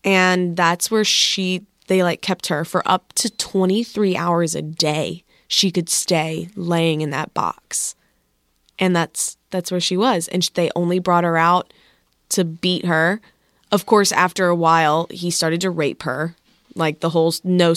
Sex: female